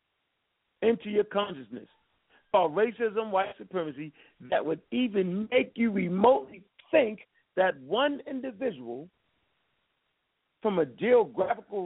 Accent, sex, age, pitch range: American, male, 50-69, 195-250 Hz